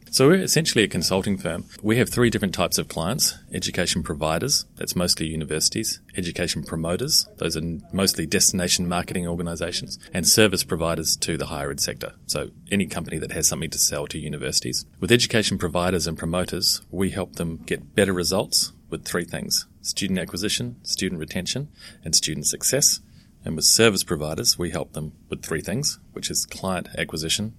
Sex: male